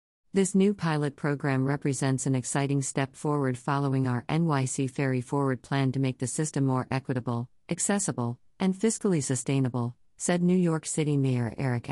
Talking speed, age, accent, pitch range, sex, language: 155 wpm, 50-69, American, 130-155 Hz, female, English